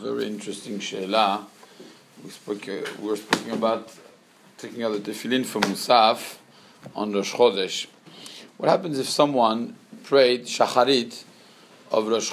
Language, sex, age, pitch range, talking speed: English, male, 50-69, 130-175 Hz, 125 wpm